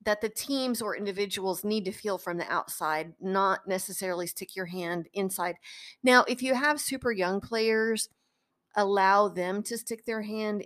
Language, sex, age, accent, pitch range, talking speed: English, female, 40-59, American, 180-220 Hz, 170 wpm